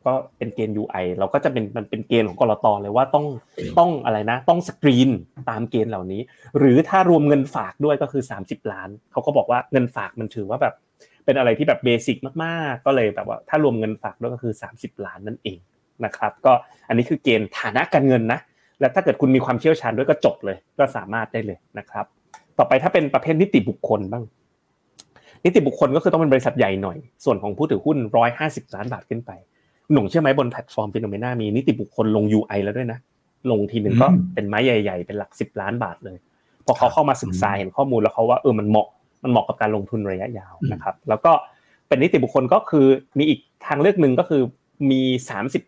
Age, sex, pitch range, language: 30-49, male, 105-135 Hz, Thai